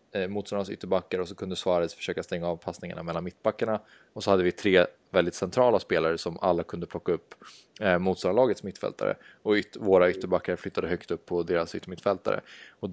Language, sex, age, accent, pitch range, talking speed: Swedish, male, 20-39, Norwegian, 90-105 Hz, 175 wpm